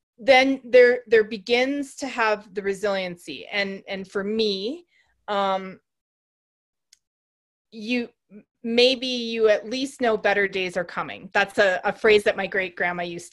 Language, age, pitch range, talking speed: English, 30-49, 195-265 Hz, 145 wpm